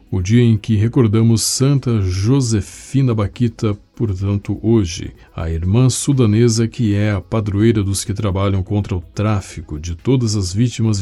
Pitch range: 100-120 Hz